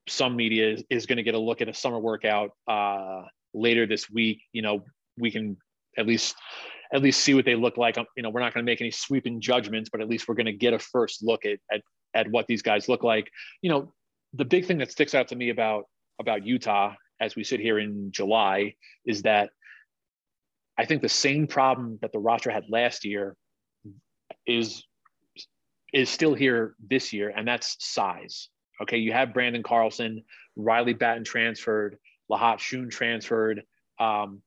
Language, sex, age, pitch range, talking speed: English, male, 30-49, 110-125 Hz, 195 wpm